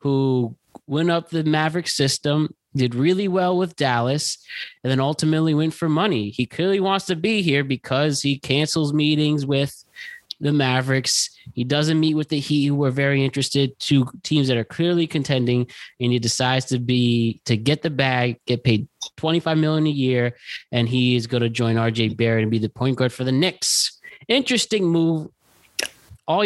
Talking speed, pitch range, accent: 180 wpm, 125-165 Hz, American